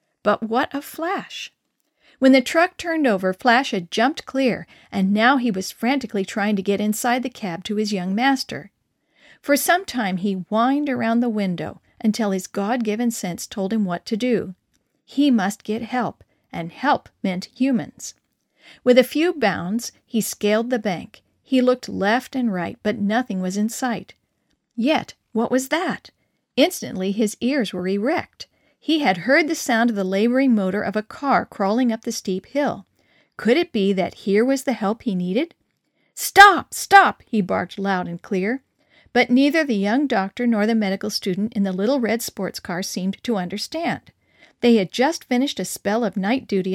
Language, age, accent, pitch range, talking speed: English, 50-69, American, 195-260 Hz, 180 wpm